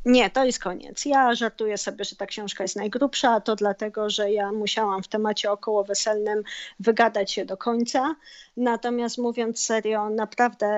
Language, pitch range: Polish, 205-240 Hz